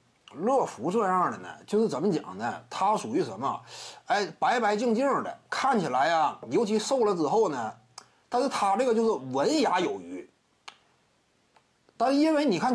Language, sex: Chinese, male